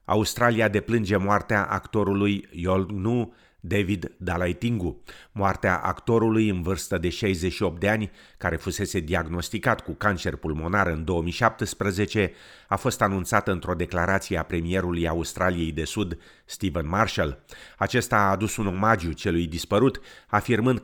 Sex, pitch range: male, 85-110 Hz